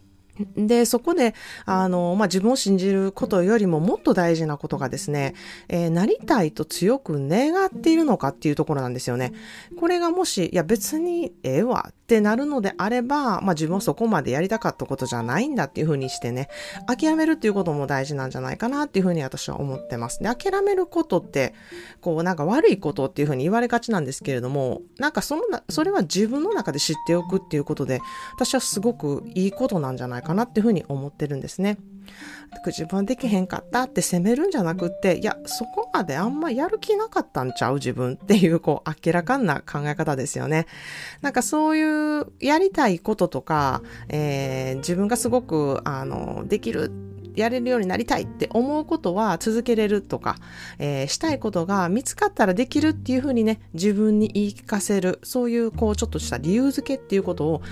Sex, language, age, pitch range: female, Japanese, 30-49, 150-245 Hz